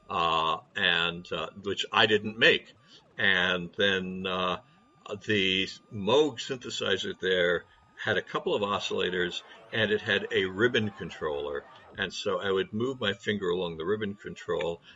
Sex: male